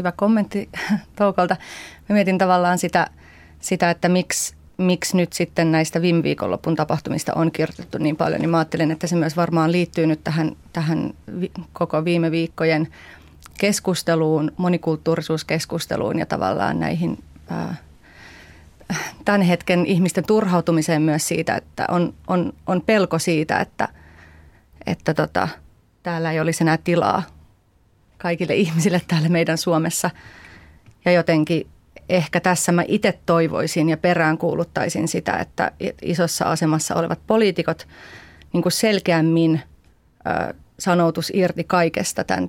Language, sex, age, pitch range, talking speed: Finnish, female, 30-49, 155-180 Hz, 125 wpm